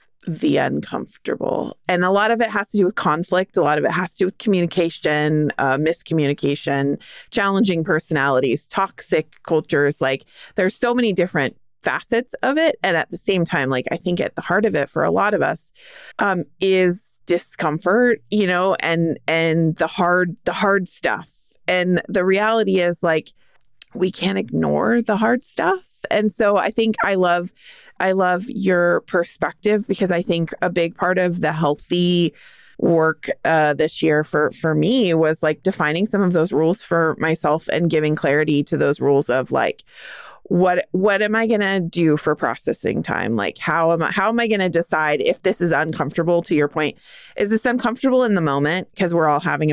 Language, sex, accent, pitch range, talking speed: English, female, American, 155-200 Hz, 190 wpm